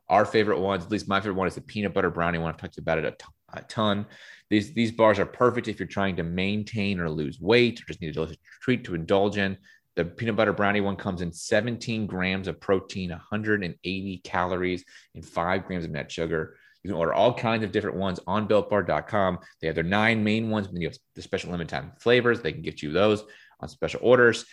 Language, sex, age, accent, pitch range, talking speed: English, male, 30-49, American, 90-115 Hz, 230 wpm